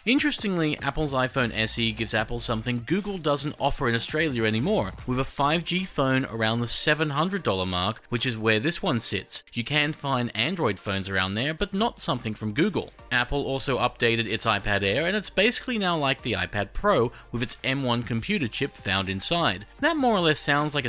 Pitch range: 110-165 Hz